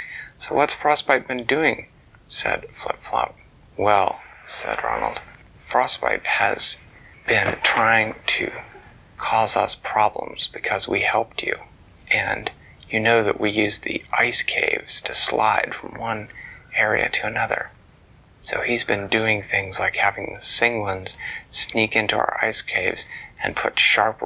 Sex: male